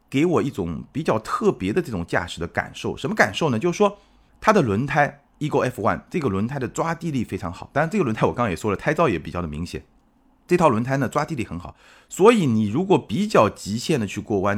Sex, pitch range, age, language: male, 95-155 Hz, 30-49, Chinese